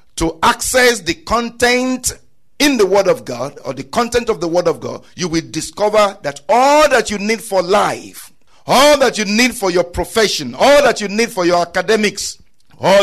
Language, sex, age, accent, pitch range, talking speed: English, male, 50-69, Nigerian, 180-245 Hz, 195 wpm